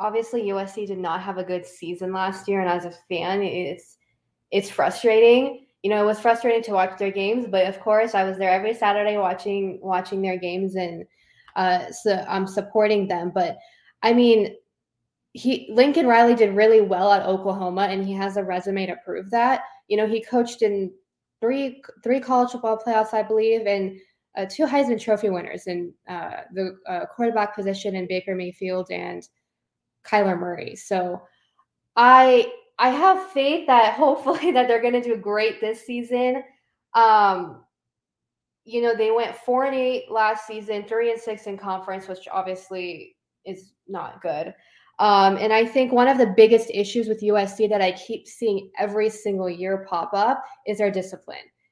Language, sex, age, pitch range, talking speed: English, female, 10-29, 190-235 Hz, 175 wpm